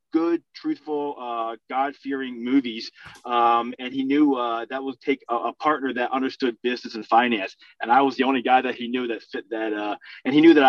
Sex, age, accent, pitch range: male, 30-49, American, 120-145 Hz